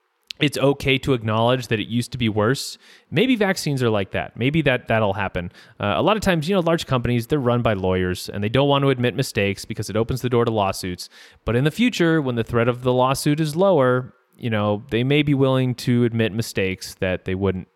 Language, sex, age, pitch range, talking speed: English, male, 30-49, 105-140 Hz, 235 wpm